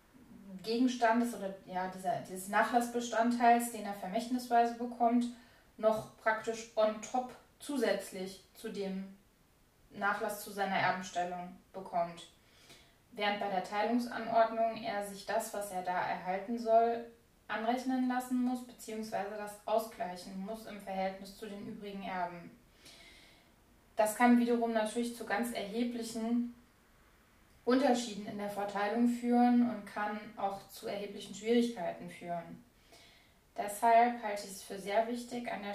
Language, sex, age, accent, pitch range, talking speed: German, female, 20-39, German, 185-235 Hz, 125 wpm